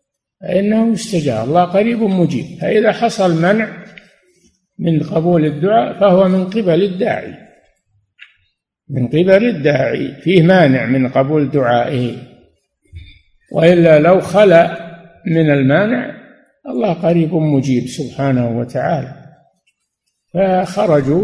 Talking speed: 95 wpm